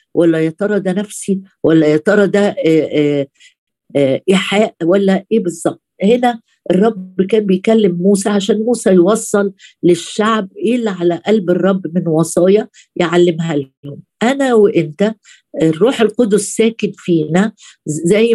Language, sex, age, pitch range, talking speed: Arabic, female, 50-69, 175-220 Hz, 120 wpm